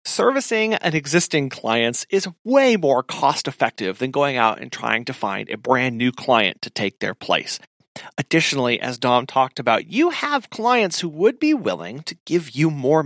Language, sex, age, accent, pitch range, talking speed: English, male, 30-49, American, 120-185 Hz, 185 wpm